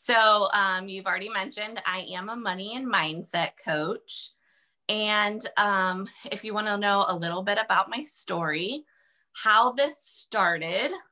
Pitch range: 185-230 Hz